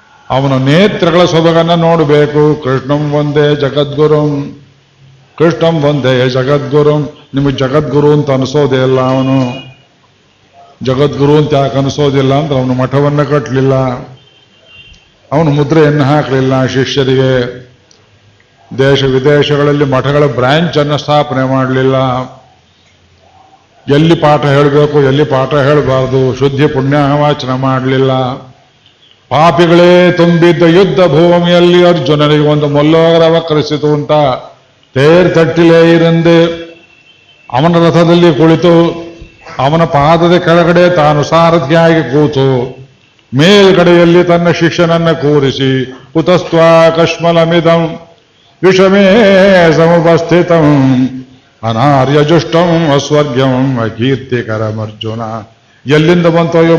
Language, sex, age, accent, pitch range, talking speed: Kannada, male, 50-69, native, 130-165 Hz, 85 wpm